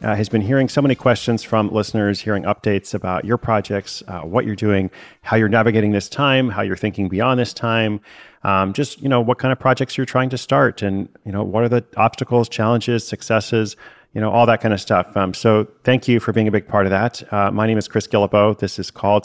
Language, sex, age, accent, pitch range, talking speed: English, male, 40-59, American, 100-120 Hz, 240 wpm